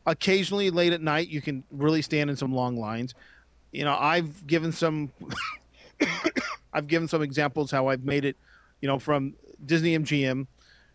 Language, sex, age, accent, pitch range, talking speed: English, male, 40-59, American, 130-165 Hz, 165 wpm